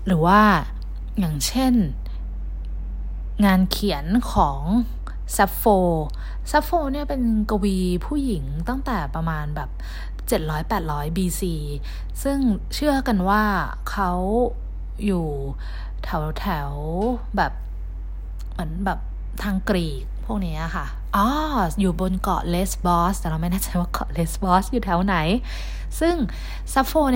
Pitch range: 155-210 Hz